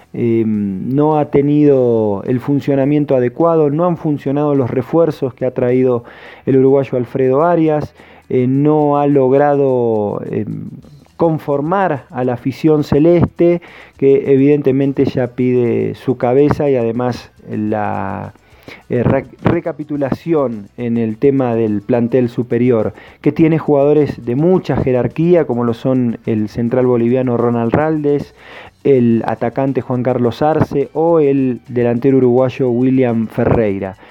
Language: Portuguese